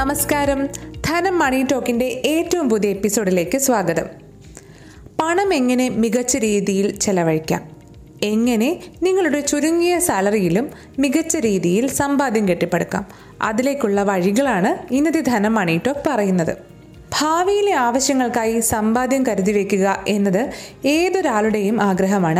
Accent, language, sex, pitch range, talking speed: native, Malayalam, female, 195-275 Hz, 95 wpm